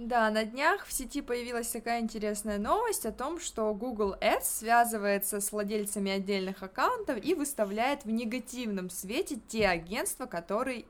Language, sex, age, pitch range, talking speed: Russian, female, 20-39, 205-245 Hz, 150 wpm